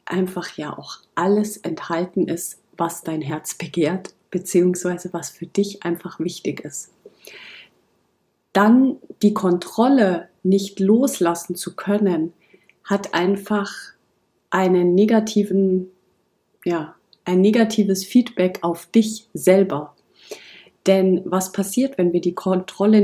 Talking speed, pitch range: 110 wpm, 170-205 Hz